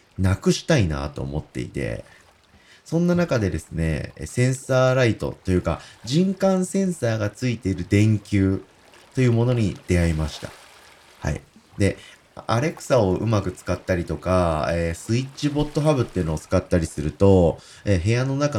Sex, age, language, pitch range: male, 30-49, Japanese, 85-130 Hz